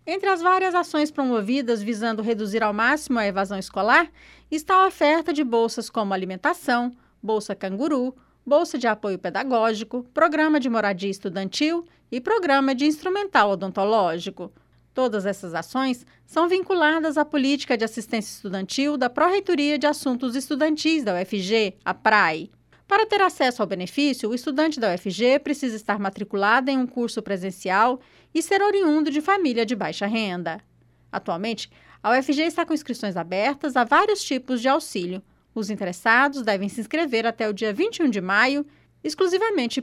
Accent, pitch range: Brazilian, 210-305 Hz